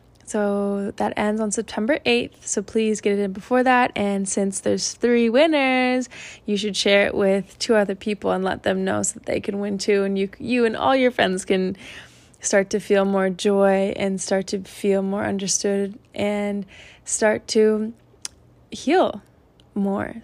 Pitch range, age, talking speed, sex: 200-230 Hz, 20-39, 180 wpm, female